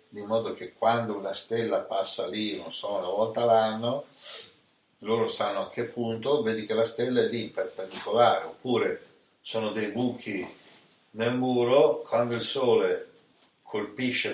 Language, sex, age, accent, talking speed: Italian, male, 60-79, native, 145 wpm